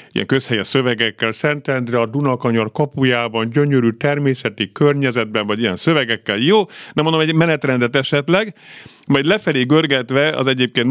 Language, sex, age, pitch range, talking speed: Hungarian, male, 50-69, 115-150 Hz, 130 wpm